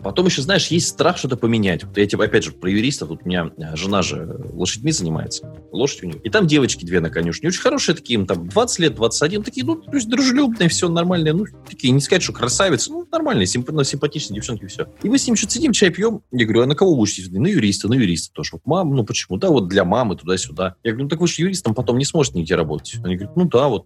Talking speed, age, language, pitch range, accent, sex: 255 wpm, 20-39, Russian, 95-155 Hz, native, male